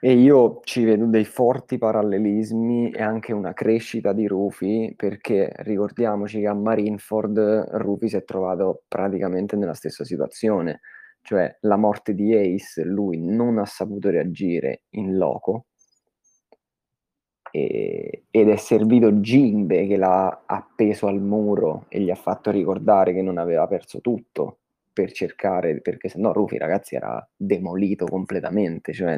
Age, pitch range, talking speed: 20-39, 100-110 Hz, 140 wpm